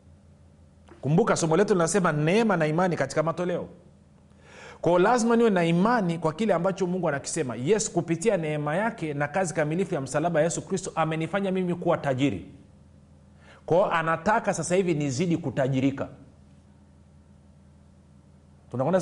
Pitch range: 135-190 Hz